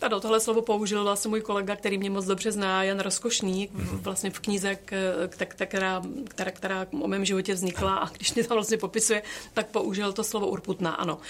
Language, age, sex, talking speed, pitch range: Czech, 30-49, female, 195 wpm, 190-225 Hz